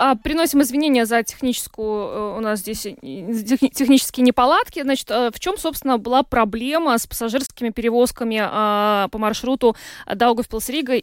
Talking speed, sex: 85 wpm, female